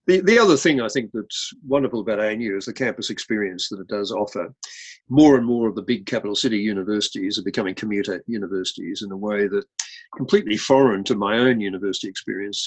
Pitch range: 105-130 Hz